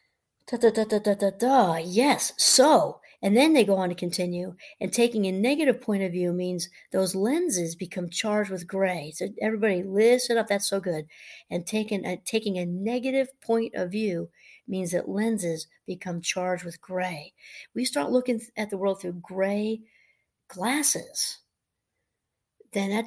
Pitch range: 180-230 Hz